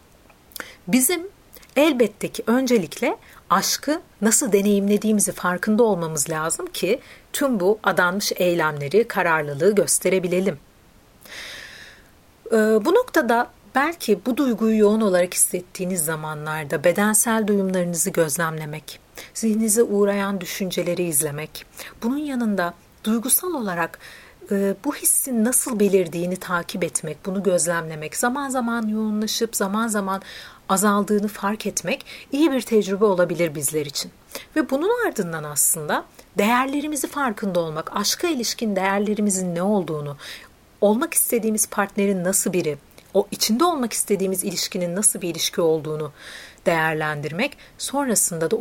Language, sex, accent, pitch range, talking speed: Turkish, female, native, 175-230 Hz, 110 wpm